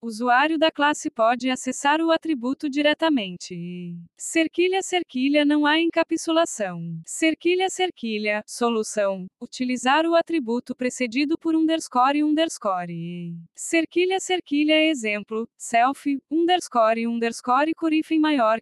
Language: Spanish